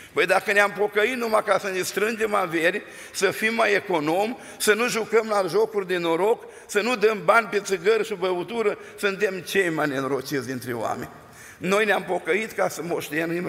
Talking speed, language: 185 wpm, Romanian